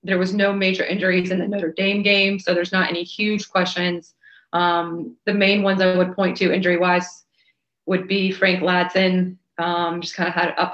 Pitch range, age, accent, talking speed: 175-190 Hz, 20-39, American, 200 wpm